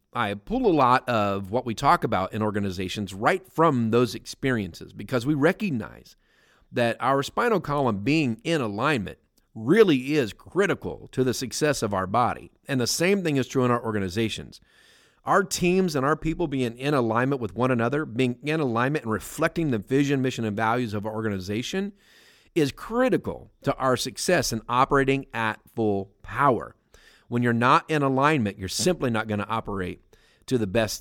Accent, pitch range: American, 105-140 Hz